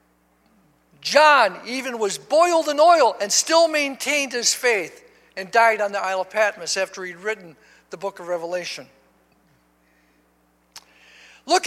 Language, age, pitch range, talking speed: English, 60-79, 190-260 Hz, 135 wpm